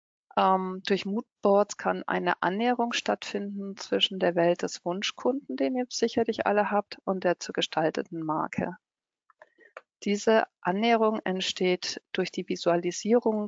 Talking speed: 120 wpm